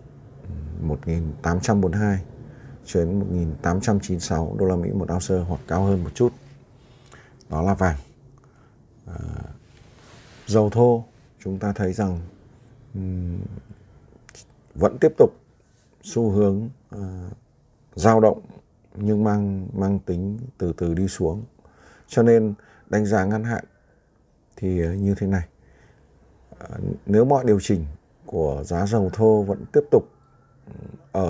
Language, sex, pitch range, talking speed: Vietnamese, male, 95-115 Hz, 125 wpm